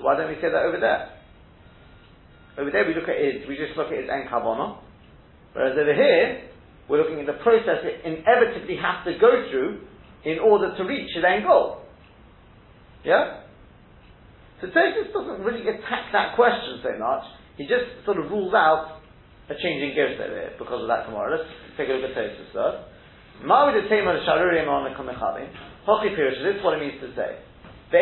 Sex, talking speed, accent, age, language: male, 175 wpm, British, 40-59, English